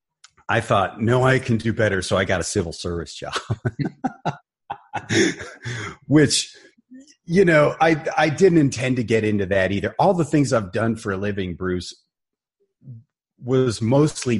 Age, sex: 30-49, male